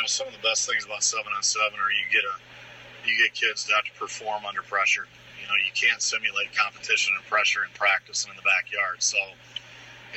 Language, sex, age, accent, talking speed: English, male, 40-59, American, 240 wpm